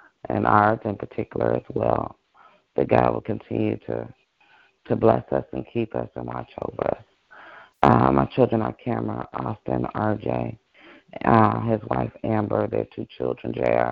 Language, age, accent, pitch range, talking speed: English, 30-49, American, 90-115 Hz, 155 wpm